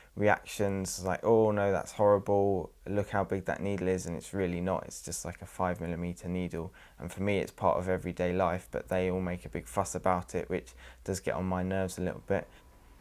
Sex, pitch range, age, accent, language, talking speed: male, 90-100 Hz, 20-39, British, English, 225 wpm